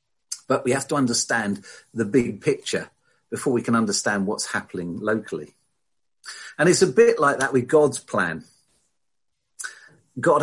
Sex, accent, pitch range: male, British, 110-155 Hz